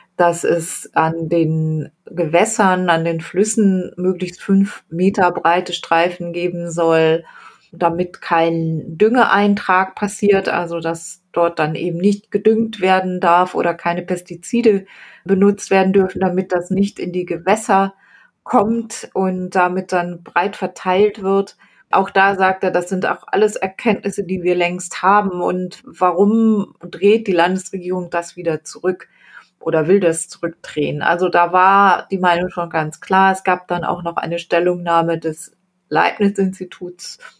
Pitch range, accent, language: 170-195 Hz, German, German